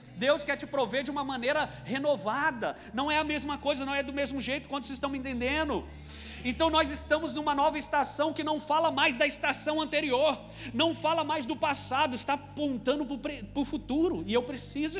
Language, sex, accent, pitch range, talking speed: Portuguese, male, Brazilian, 225-290 Hz, 195 wpm